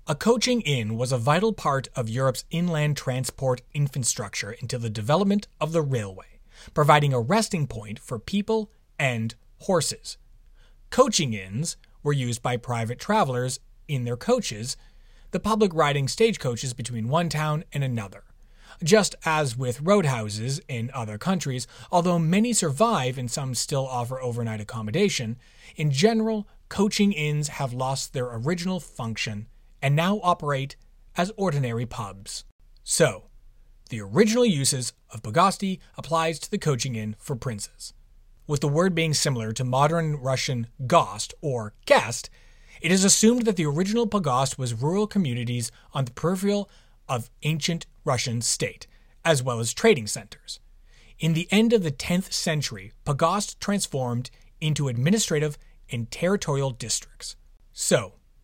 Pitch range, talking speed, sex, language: 120-175 Hz, 140 wpm, male, English